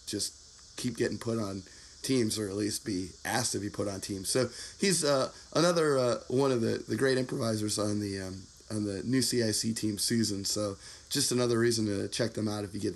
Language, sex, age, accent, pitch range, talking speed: English, male, 20-39, American, 105-130 Hz, 220 wpm